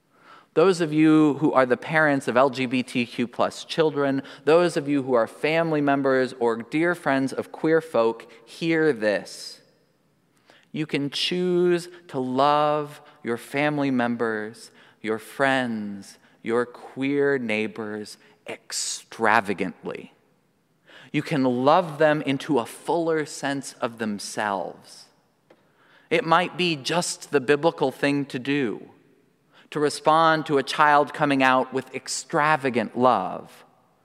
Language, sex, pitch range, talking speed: English, male, 125-155 Hz, 120 wpm